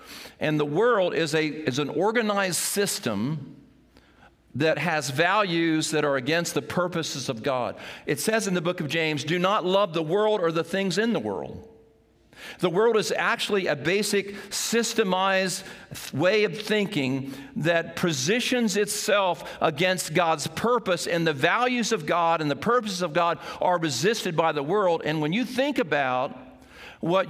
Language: English